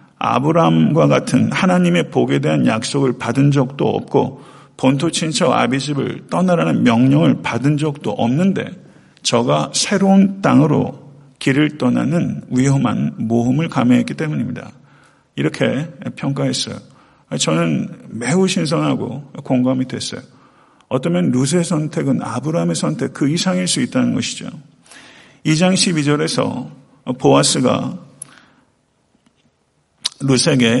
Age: 50-69